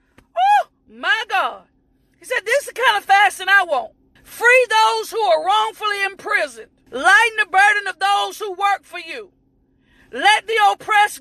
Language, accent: English, American